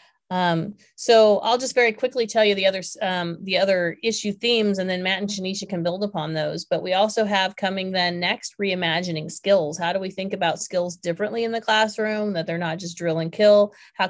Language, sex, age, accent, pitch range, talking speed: English, female, 30-49, American, 180-215 Hz, 215 wpm